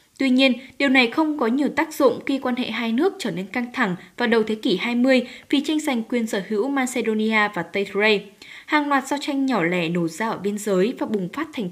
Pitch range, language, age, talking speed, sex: 210-285 Hz, Vietnamese, 10-29, 245 wpm, female